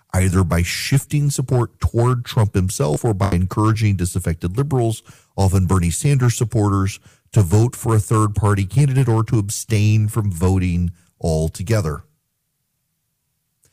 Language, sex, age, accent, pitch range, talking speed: English, male, 40-59, American, 95-125 Hz, 120 wpm